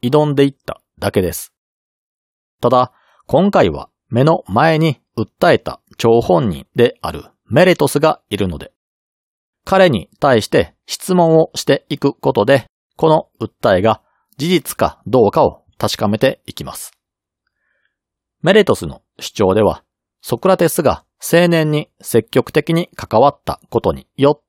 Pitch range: 110-165 Hz